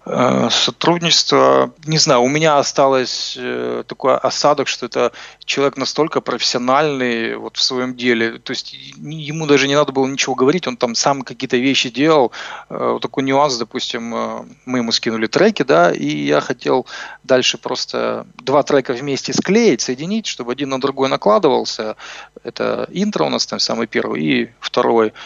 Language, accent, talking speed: Russian, native, 165 wpm